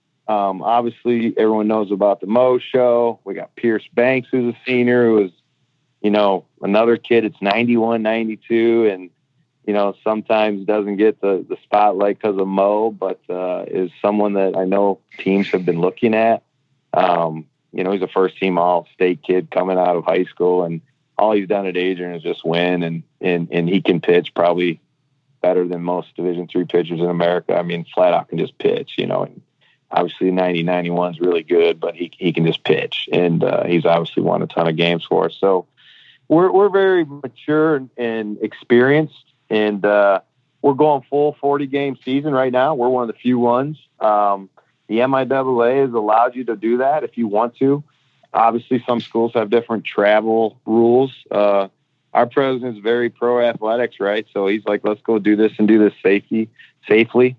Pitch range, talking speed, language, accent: 95-125 Hz, 190 wpm, English, American